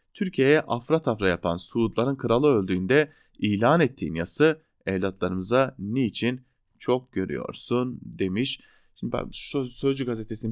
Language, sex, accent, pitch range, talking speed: German, male, Turkish, 100-140 Hz, 110 wpm